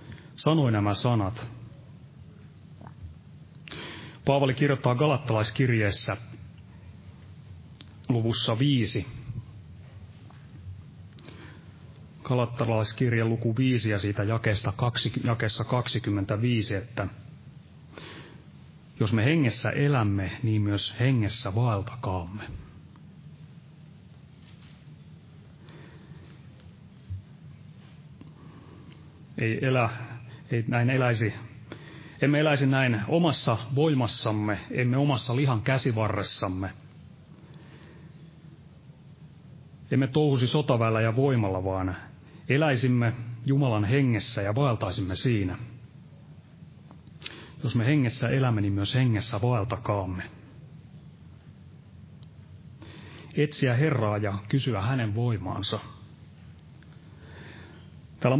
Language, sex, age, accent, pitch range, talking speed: Finnish, male, 30-49, native, 110-140 Hz, 65 wpm